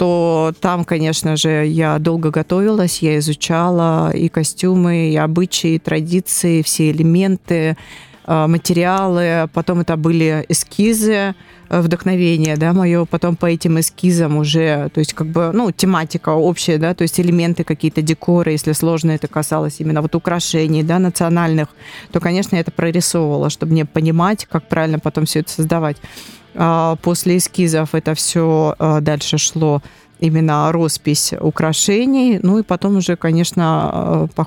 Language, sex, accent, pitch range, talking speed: Russian, female, native, 155-175 Hz, 140 wpm